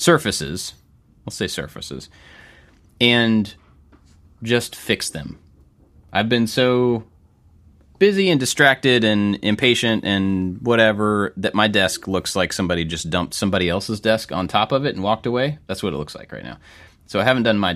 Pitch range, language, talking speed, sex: 80-100 Hz, English, 160 wpm, male